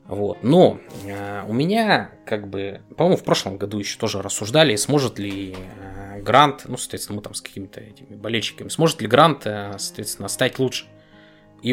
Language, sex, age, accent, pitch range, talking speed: Russian, male, 20-39, native, 100-130 Hz, 175 wpm